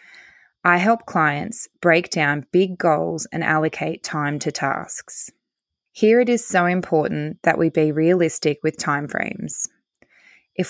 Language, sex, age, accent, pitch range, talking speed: English, female, 20-39, Australian, 155-195 Hz, 135 wpm